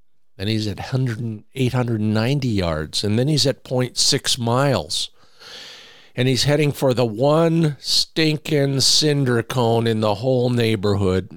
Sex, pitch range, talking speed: male, 105-130 Hz, 130 wpm